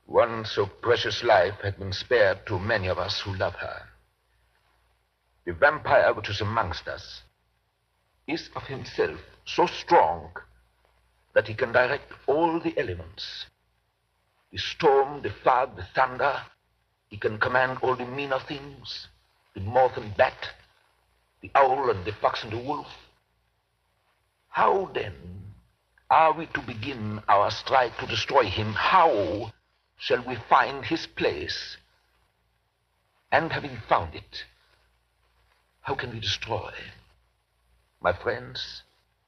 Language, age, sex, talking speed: English, 60-79, male, 130 wpm